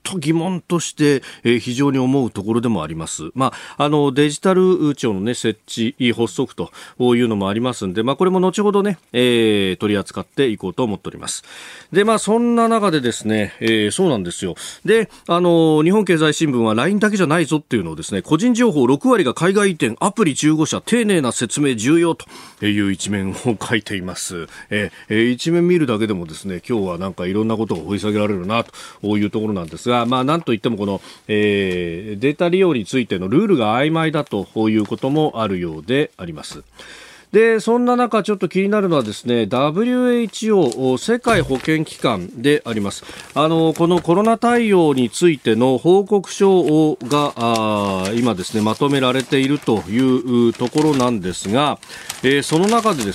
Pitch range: 110-180 Hz